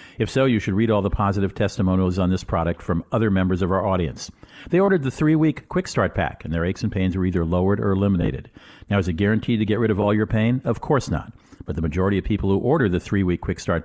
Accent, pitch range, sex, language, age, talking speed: American, 95-120 Hz, male, English, 50-69, 260 wpm